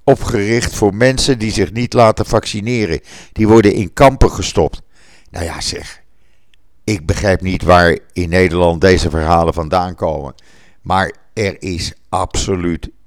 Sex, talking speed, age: male, 140 wpm, 60-79